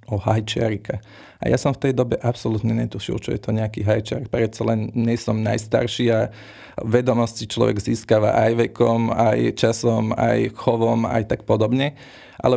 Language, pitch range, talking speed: Slovak, 110-125 Hz, 160 wpm